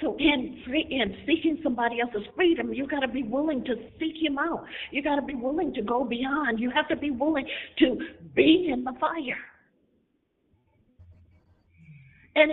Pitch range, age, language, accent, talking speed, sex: 210-290 Hz, 50-69, English, American, 170 wpm, female